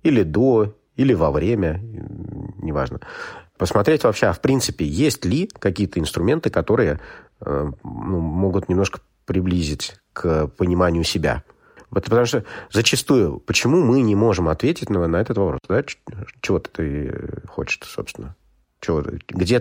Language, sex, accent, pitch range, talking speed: Russian, male, native, 85-115 Hz, 115 wpm